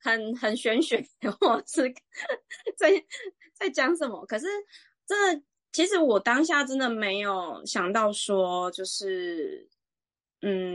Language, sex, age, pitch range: Chinese, female, 20-39, 190-285 Hz